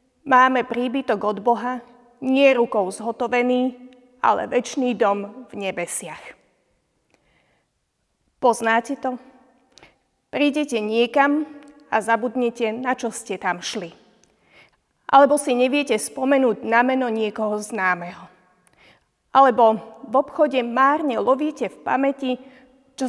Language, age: Slovak, 30-49